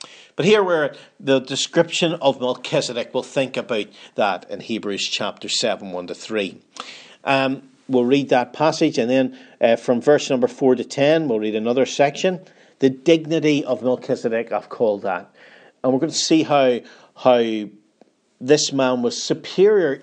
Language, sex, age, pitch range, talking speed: English, male, 40-59, 120-155 Hz, 160 wpm